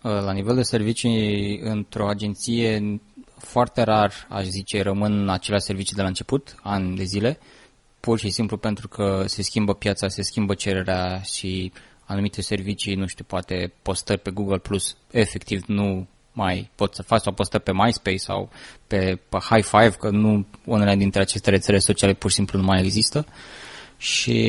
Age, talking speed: 20-39, 170 wpm